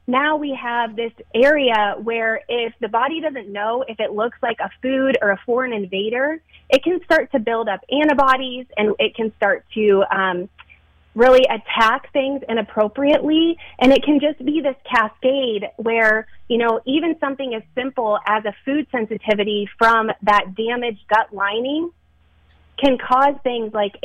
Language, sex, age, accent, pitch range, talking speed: English, female, 30-49, American, 210-255 Hz, 160 wpm